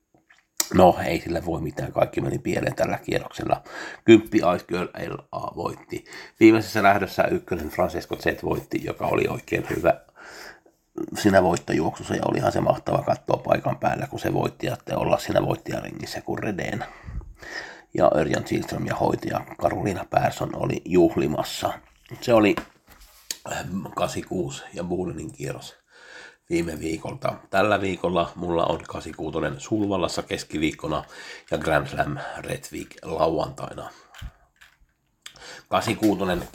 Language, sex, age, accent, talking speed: Finnish, male, 60-79, native, 120 wpm